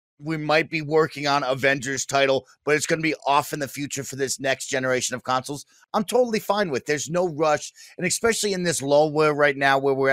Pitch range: 130-155 Hz